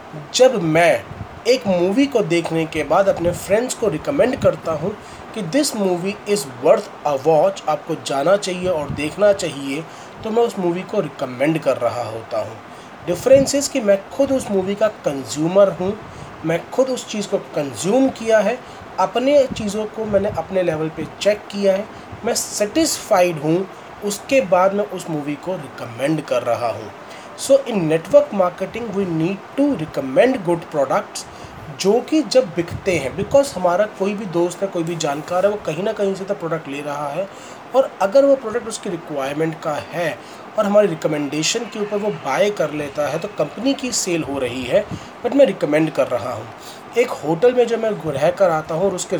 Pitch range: 160-215 Hz